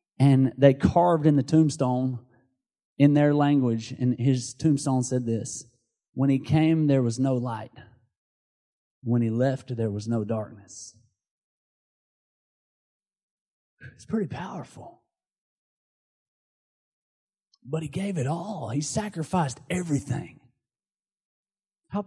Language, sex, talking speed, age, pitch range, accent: English, male, 110 wpm, 30-49, 120-145 Hz, American